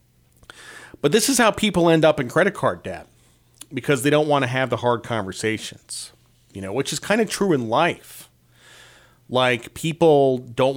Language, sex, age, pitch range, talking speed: English, male, 40-59, 95-135 Hz, 180 wpm